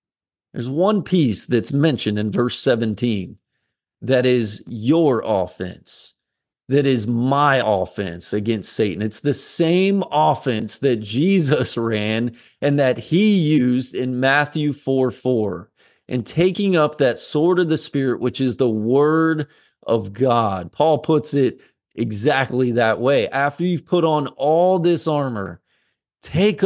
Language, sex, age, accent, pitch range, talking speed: English, male, 40-59, American, 115-150 Hz, 135 wpm